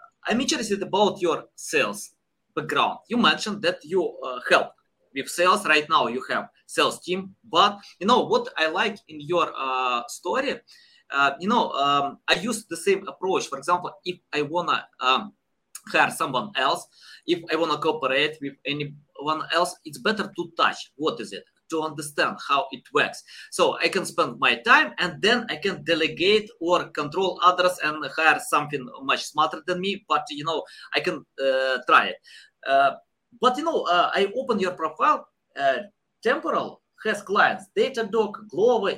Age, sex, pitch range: 20-39, male, 165-235 Hz